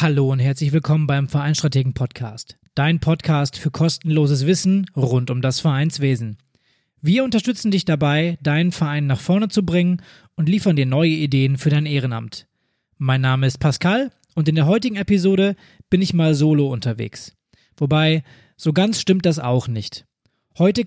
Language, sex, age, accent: German, male, 20-39, German